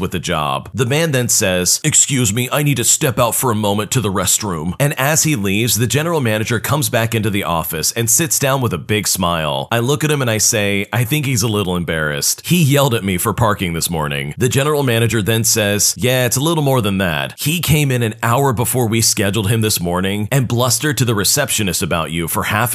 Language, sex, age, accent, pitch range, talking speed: English, male, 40-59, American, 100-130 Hz, 245 wpm